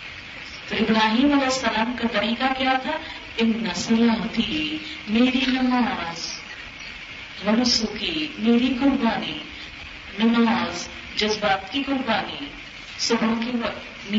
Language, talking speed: Urdu, 100 wpm